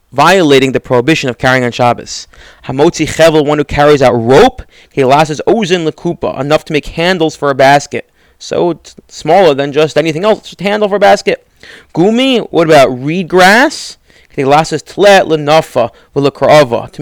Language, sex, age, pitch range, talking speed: English, male, 30-49, 140-175 Hz, 175 wpm